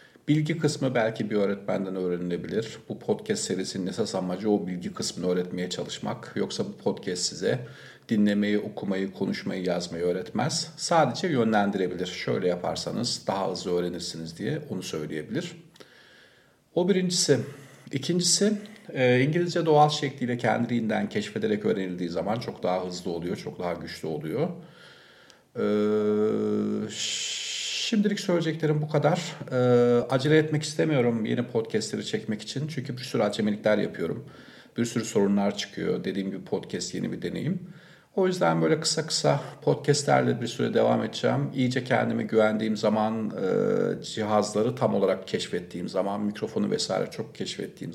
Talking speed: 135 wpm